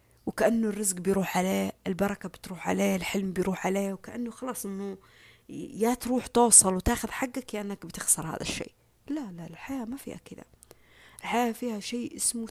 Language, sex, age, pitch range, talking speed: Arabic, female, 20-39, 190-245 Hz, 165 wpm